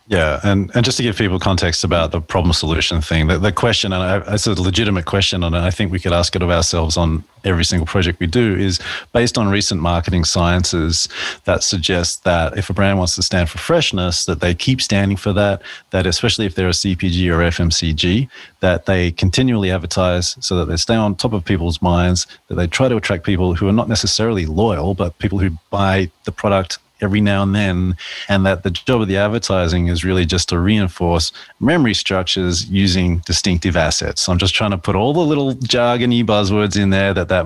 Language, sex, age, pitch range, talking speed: English, male, 30-49, 90-105 Hz, 210 wpm